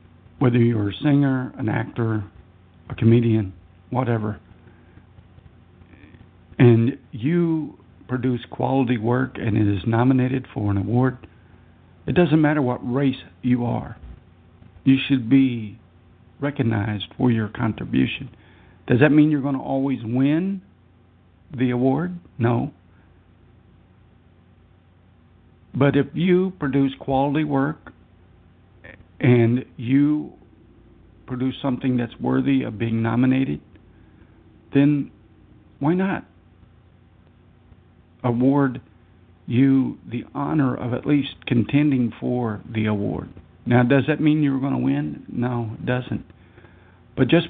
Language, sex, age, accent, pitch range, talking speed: English, male, 60-79, American, 95-130 Hz, 110 wpm